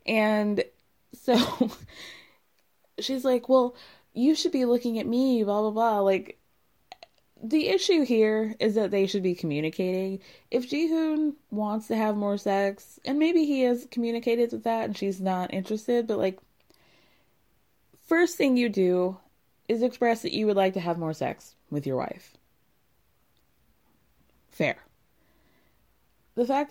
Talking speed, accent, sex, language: 145 wpm, American, female, English